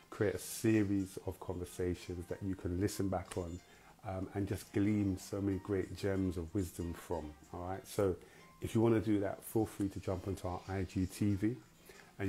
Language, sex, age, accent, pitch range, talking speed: English, male, 30-49, British, 90-100 Hz, 180 wpm